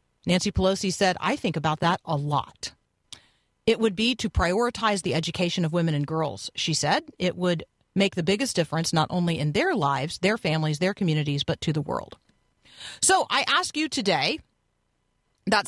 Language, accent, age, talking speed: English, American, 40-59, 180 wpm